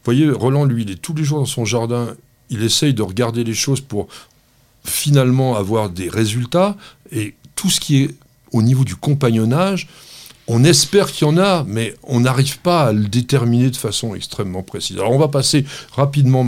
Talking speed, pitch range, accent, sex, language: 195 wpm, 120-155 Hz, French, male, French